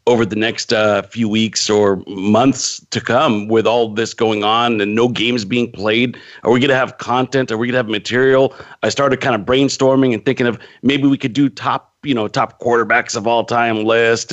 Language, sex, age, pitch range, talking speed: English, male, 40-59, 110-135 Hz, 220 wpm